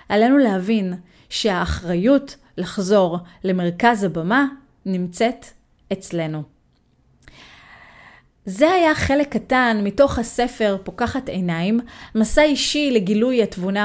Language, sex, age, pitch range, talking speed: Hebrew, female, 30-49, 185-275 Hz, 85 wpm